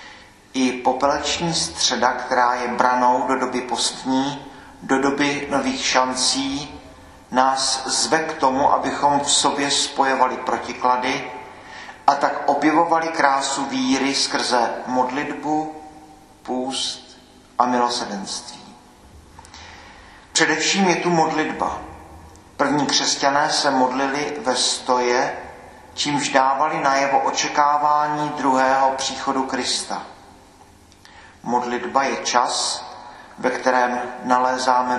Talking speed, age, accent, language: 95 wpm, 40-59, native, Czech